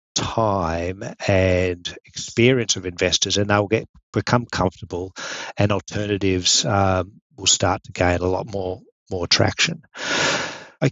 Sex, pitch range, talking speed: male, 95-115 Hz, 125 wpm